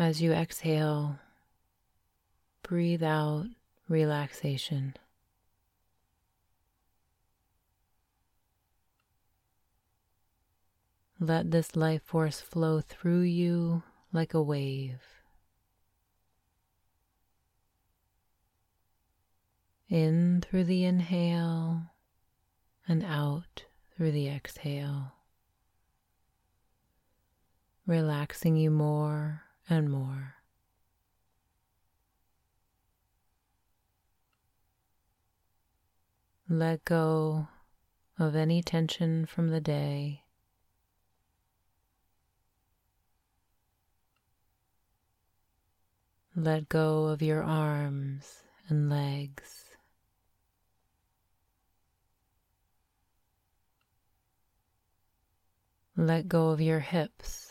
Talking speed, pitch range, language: 50 wpm, 90-155 Hz, English